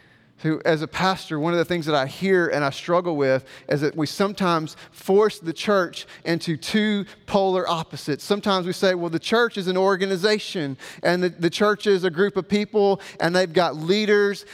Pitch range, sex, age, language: 180-225 Hz, male, 40-59, English